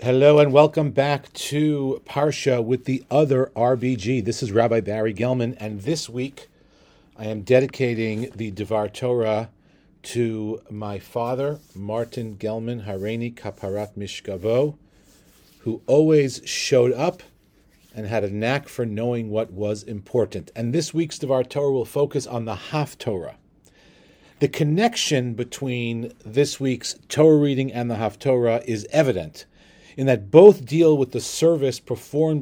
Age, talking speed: 40-59, 145 wpm